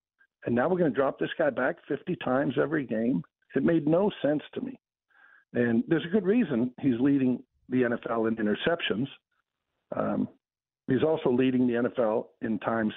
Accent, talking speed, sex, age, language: American, 175 wpm, male, 60-79, English